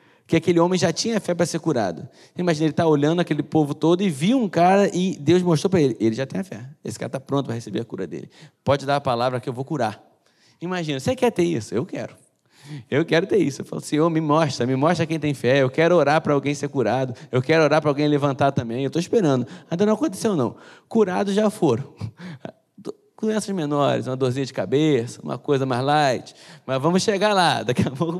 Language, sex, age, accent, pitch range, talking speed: Portuguese, male, 20-39, Brazilian, 135-185 Hz, 230 wpm